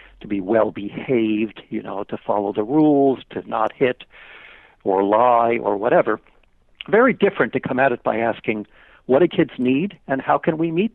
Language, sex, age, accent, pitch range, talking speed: English, male, 60-79, American, 115-155 Hz, 175 wpm